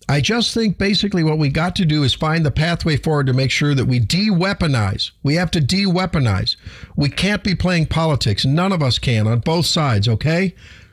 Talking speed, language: 205 wpm, English